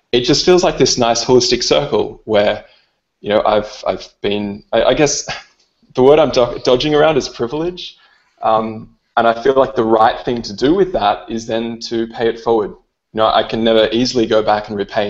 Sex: male